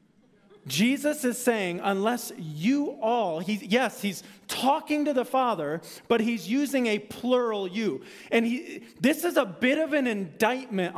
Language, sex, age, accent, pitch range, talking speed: English, male, 30-49, American, 145-245 Hz, 140 wpm